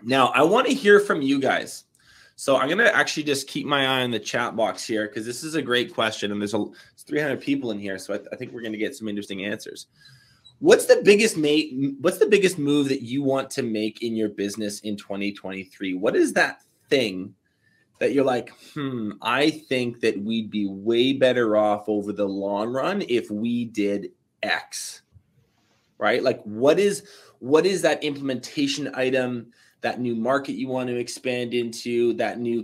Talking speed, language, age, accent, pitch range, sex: 200 wpm, English, 20-39, American, 115-140 Hz, male